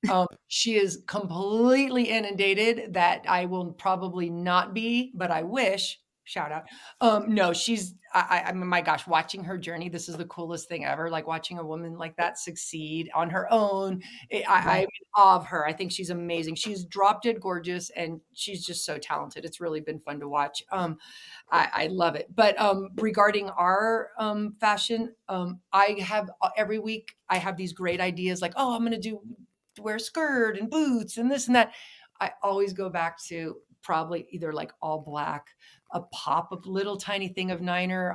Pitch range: 170-210 Hz